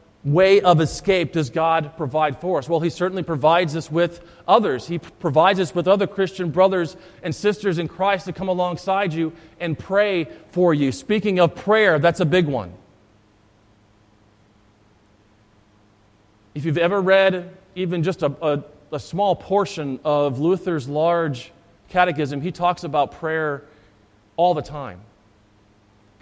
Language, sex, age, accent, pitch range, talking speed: English, male, 40-59, American, 120-175 Hz, 150 wpm